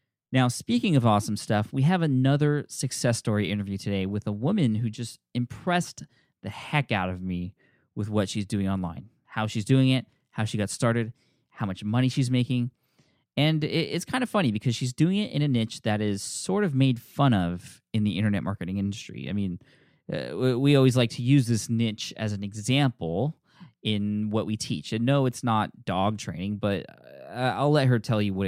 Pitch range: 105-135 Hz